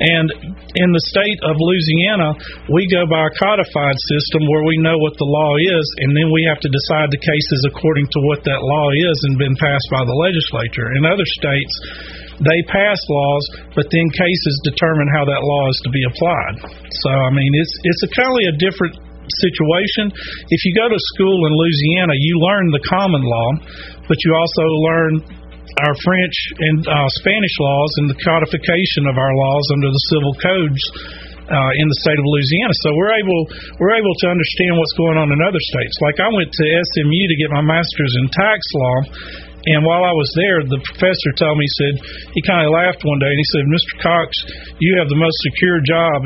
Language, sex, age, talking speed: English, male, 40-59, 200 wpm